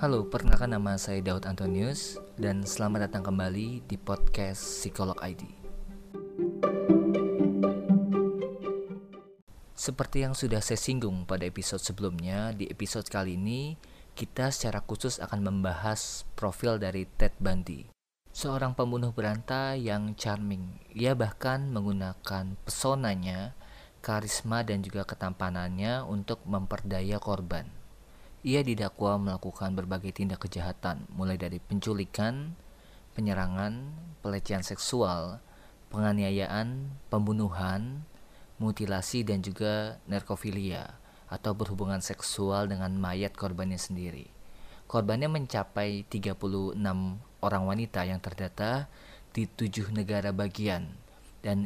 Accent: native